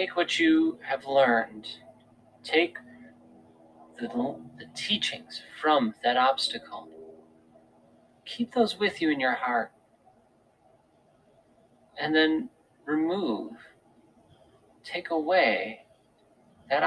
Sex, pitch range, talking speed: male, 130-200 Hz, 90 wpm